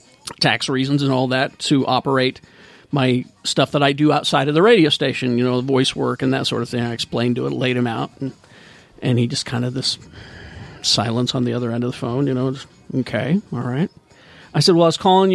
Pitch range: 130-200 Hz